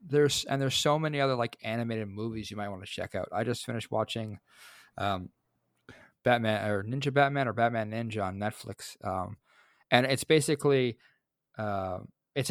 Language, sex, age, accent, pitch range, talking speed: English, male, 20-39, American, 100-125 Hz, 170 wpm